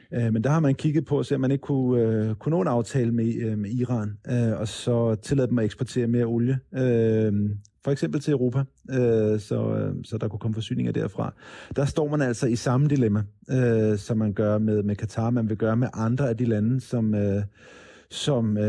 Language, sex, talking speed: Danish, male, 185 wpm